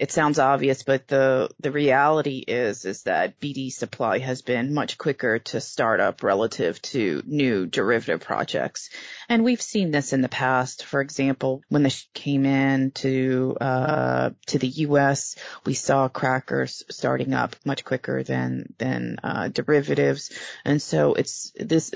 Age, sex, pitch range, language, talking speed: 30-49, female, 130-145 Hz, English, 155 wpm